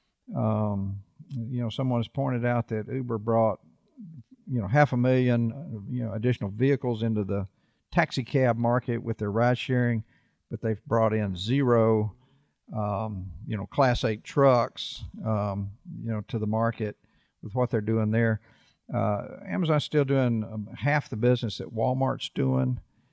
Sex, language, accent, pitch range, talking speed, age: male, English, American, 110-130 Hz, 160 wpm, 50-69